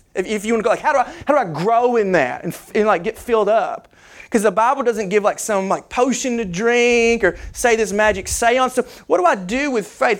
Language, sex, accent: English, male, American